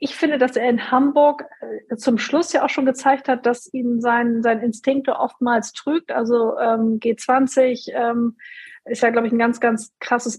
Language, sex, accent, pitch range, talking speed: German, female, German, 215-245 Hz, 185 wpm